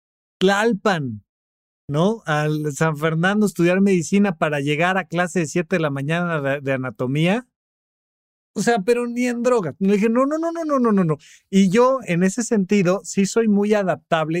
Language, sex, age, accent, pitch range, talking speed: Spanish, male, 40-59, Mexican, 150-210 Hz, 175 wpm